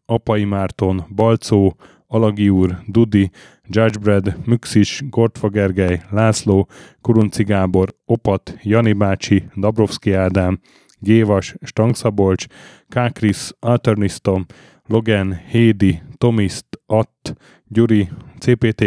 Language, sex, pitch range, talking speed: Hungarian, male, 95-115 Hz, 90 wpm